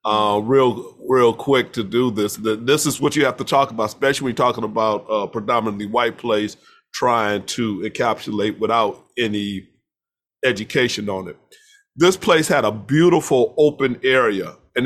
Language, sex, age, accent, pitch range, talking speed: English, male, 40-59, American, 115-150 Hz, 160 wpm